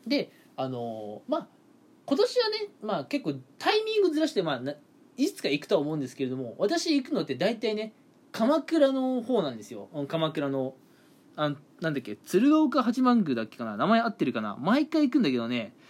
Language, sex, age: Japanese, male, 20-39